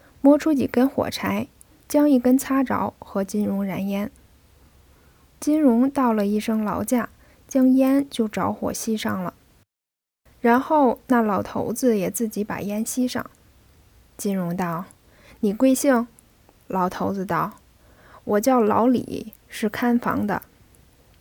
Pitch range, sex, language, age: 175-245 Hz, female, Chinese, 10-29